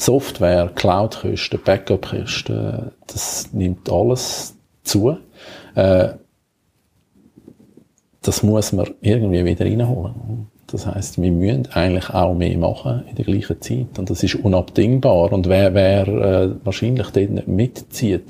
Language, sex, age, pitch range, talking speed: German, male, 50-69, 95-120 Hz, 130 wpm